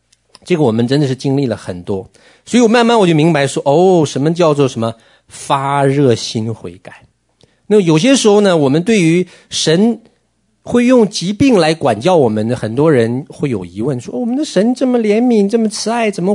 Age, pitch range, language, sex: 50-69, 125-205 Hz, Chinese, male